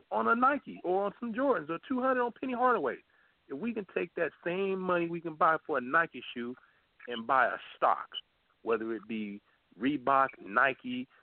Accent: American